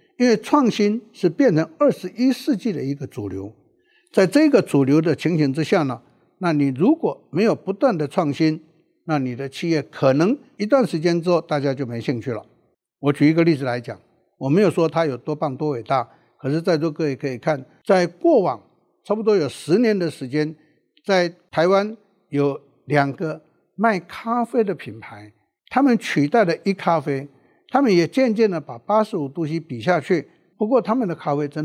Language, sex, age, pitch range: Chinese, male, 60-79, 150-205 Hz